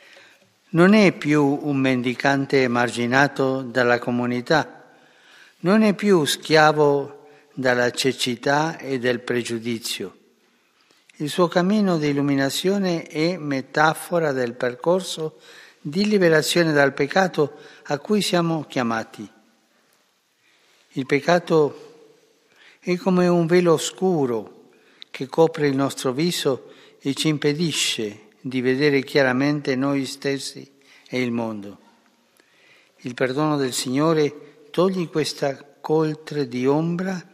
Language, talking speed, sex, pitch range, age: Italian, 105 wpm, male, 125-160 Hz, 60-79